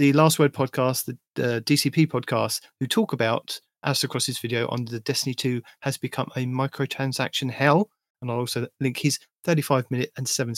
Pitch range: 120-145 Hz